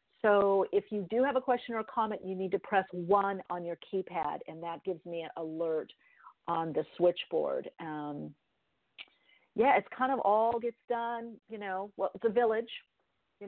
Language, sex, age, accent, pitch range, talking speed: English, female, 50-69, American, 180-245 Hz, 185 wpm